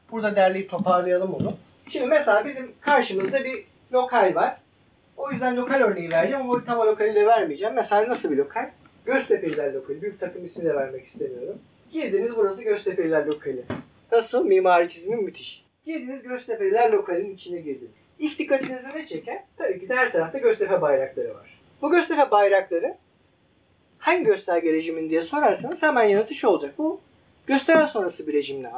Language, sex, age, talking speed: Turkish, male, 30-49, 150 wpm